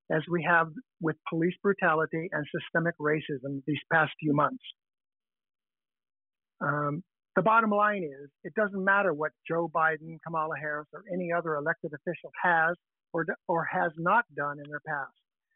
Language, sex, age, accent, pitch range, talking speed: English, male, 50-69, American, 155-185 Hz, 155 wpm